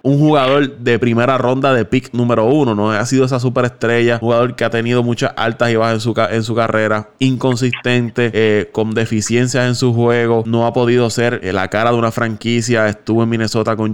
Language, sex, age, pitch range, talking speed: Spanish, male, 20-39, 110-125 Hz, 215 wpm